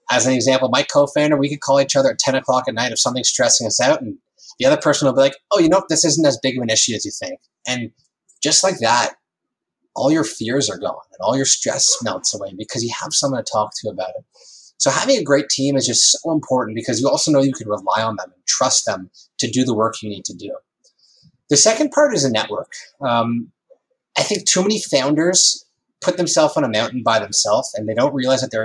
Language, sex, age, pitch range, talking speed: English, male, 20-39, 120-190 Hz, 250 wpm